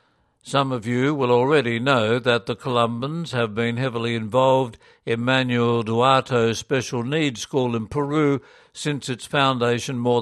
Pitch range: 120-140 Hz